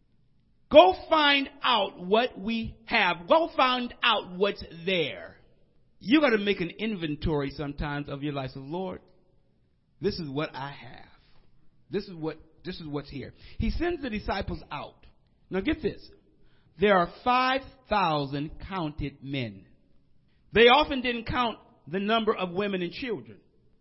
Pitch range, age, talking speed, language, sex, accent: 165-265 Hz, 50-69, 145 wpm, English, male, American